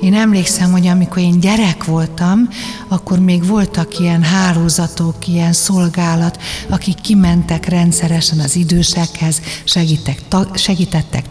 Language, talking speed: Hungarian, 110 wpm